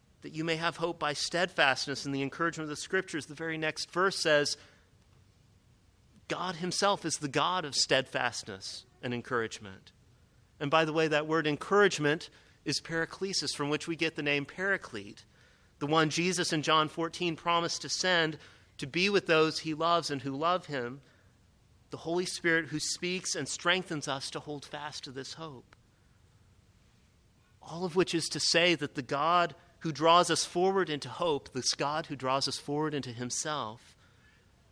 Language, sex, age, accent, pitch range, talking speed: English, male, 40-59, American, 115-160 Hz, 170 wpm